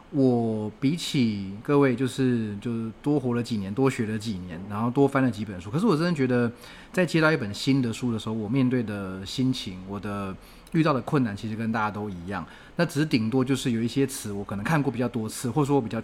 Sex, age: male, 30-49